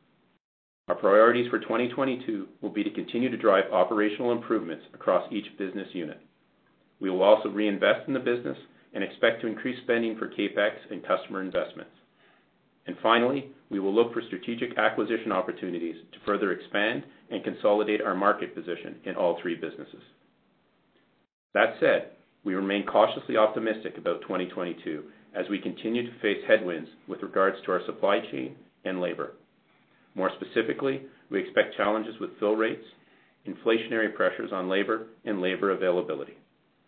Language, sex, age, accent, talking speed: English, male, 40-59, American, 150 wpm